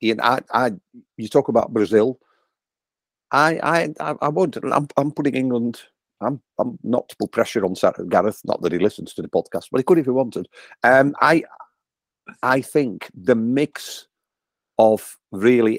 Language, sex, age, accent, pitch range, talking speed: English, male, 50-69, British, 105-135 Hz, 175 wpm